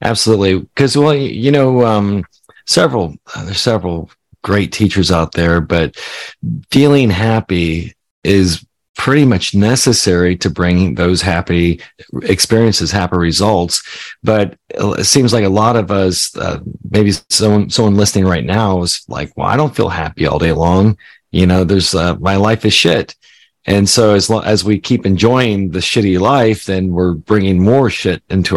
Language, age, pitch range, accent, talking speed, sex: English, 40-59, 90-115 Hz, American, 165 wpm, male